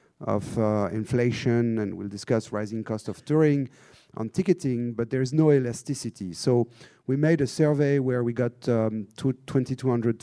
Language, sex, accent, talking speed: English, male, French, 160 wpm